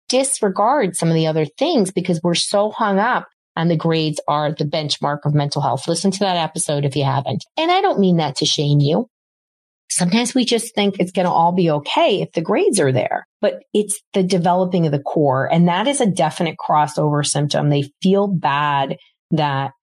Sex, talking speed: female, 205 wpm